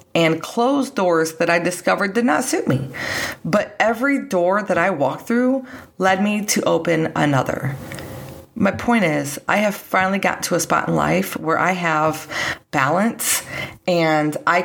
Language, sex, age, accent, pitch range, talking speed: English, female, 40-59, American, 155-200 Hz, 165 wpm